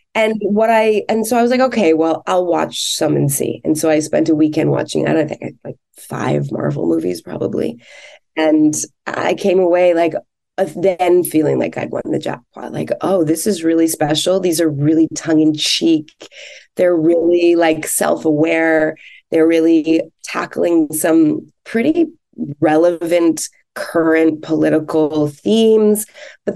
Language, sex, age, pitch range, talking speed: English, female, 20-39, 160-240 Hz, 155 wpm